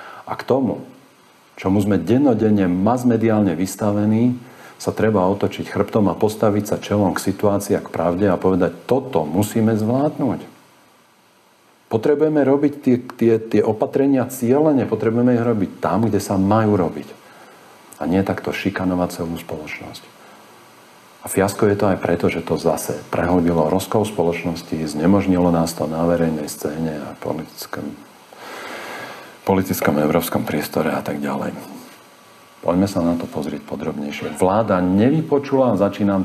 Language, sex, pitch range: Slovak, male, 90-115 Hz